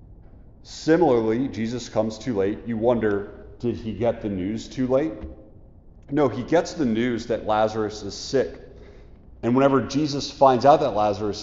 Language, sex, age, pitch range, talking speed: English, male, 40-59, 95-125 Hz, 160 wpm